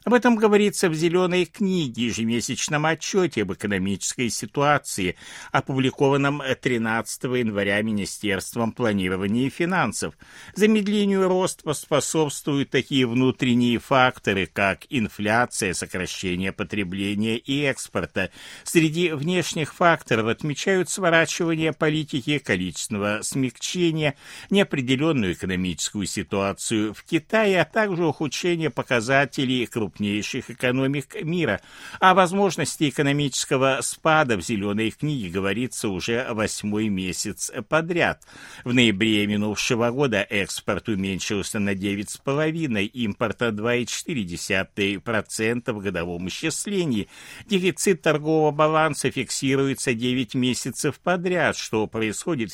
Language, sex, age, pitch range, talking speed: Russian, male, 60-79, 105-155 Hz, 95 wpm